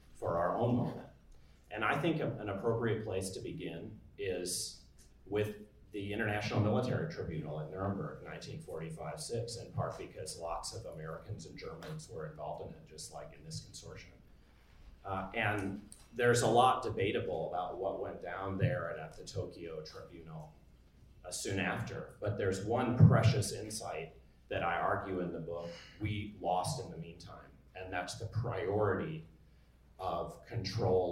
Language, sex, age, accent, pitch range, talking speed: English, male, 40-59, American, 75-110 Hz, 155 wpm